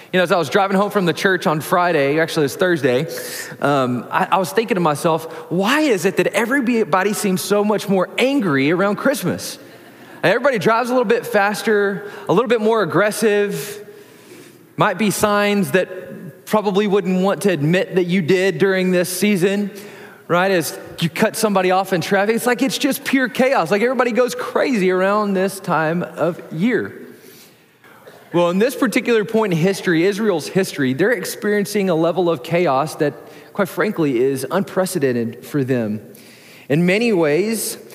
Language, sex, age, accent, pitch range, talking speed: English, male, 20-39, American, 165-210 Hz, 170 wpm